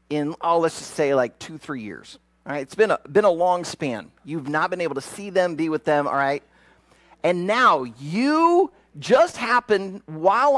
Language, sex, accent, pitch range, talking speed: English, male, American, 150-235 Hz, 205 wpm